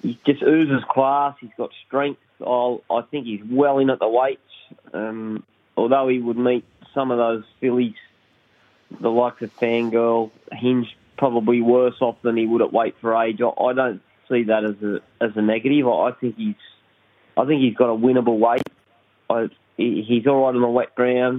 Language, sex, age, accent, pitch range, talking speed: English, male, 20-39, Australian, 120-140 Hz, 195 wpm